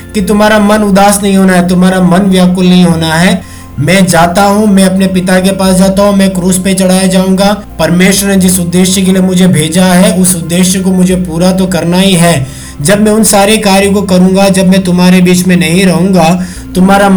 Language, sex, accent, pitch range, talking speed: Hindi, male, native, 180-195 Hz, 125 wpm